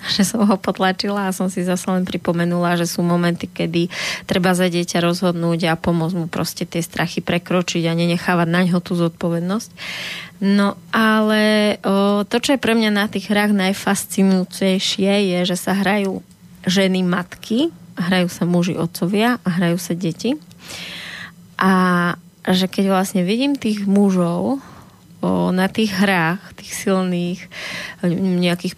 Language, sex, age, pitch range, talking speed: Slovak, female, 20-39, 175-200 Hz, 145 wpm